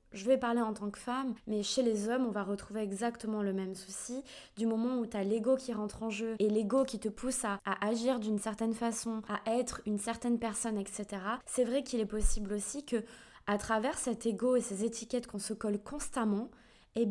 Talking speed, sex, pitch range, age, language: 225 wpm, female, 215-250 Hz, 20-39, French